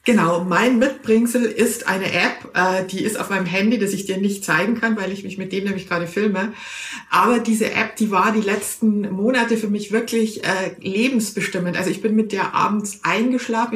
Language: German